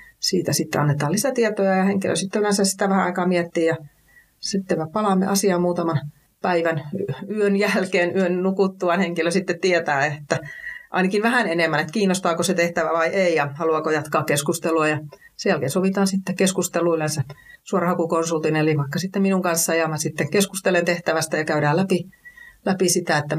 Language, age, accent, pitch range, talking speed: Finnish, 30-49, native, 155-190 Hz, 160 wpm